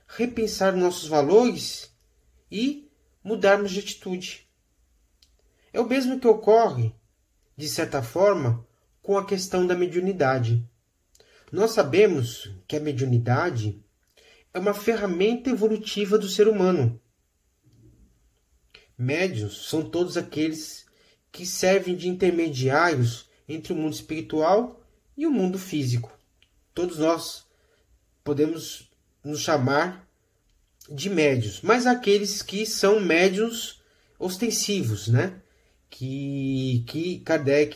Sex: male